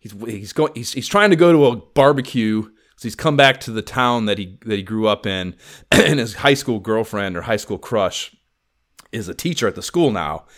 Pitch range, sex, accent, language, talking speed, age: 105-135 Hz, male, American, English, 235 wpm, 30-49